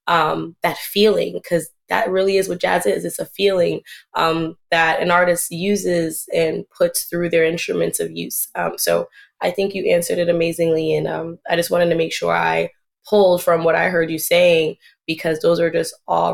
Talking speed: 200 wpm